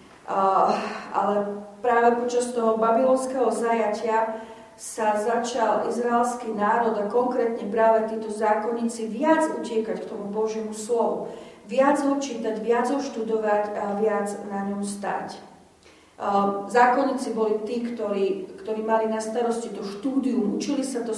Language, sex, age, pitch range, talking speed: Slovak, female, 40-59, 215-240 Hz, 130 wpm